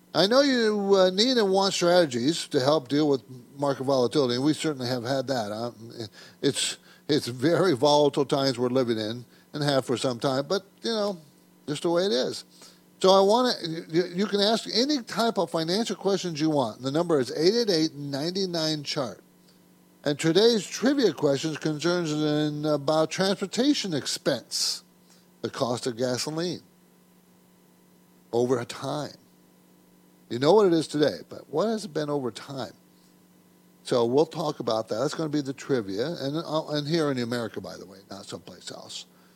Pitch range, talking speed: 125-185 Hz, 170 wpm